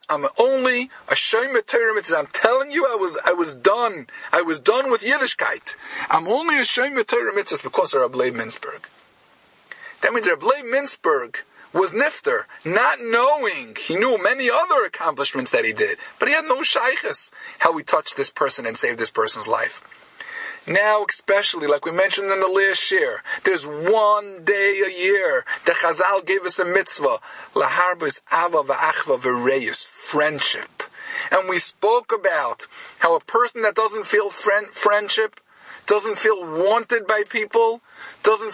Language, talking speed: English, 155 wpm